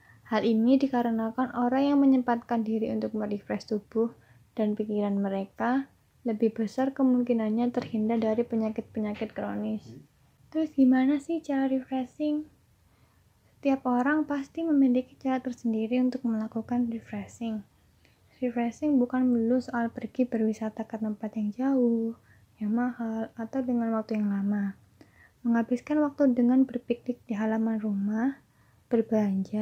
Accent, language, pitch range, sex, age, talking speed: native, Indonesian, 215-250 Hz, female, 20-39, 120 wpm